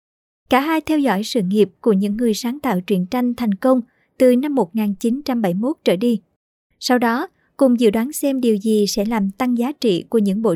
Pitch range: 210-255 Hz